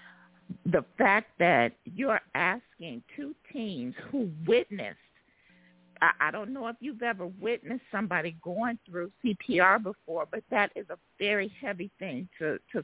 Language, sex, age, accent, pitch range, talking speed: English, female, 50-69, American, 180-240 Hz, 140 wpm